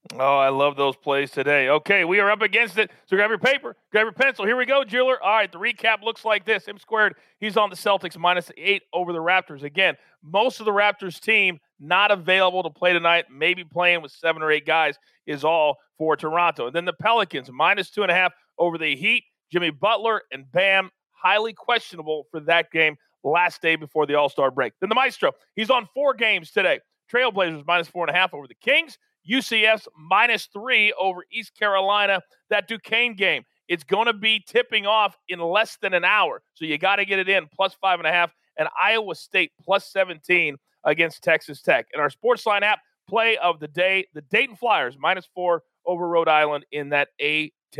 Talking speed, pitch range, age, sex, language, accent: 210 wpm, 160-220 Hz, 40-59, male, English, American